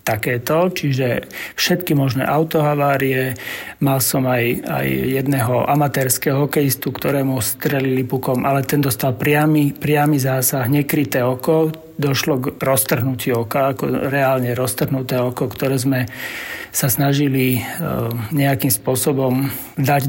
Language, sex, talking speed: Slovak, male, 110 wpm